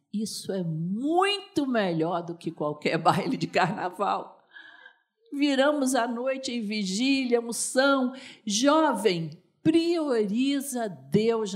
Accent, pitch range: Brazilian, 180-280 Hz